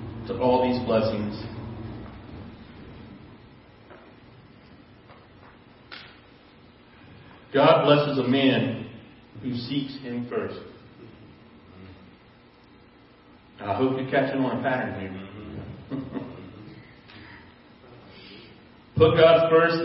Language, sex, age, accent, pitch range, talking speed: English, male, 40-59, American, 110-140 Hz, 65 wpm